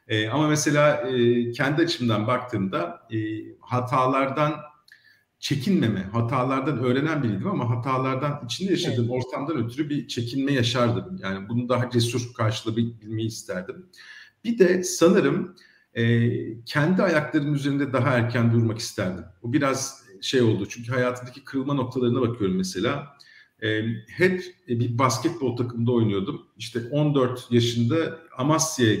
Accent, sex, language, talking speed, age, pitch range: native, male, Turkish, 125 wpm, 50-69, 115-135 Hz